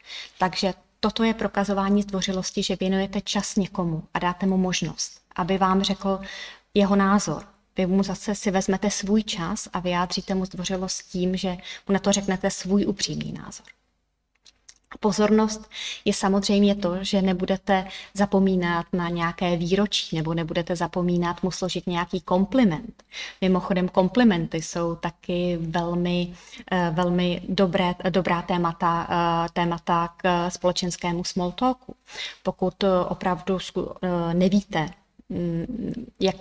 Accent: native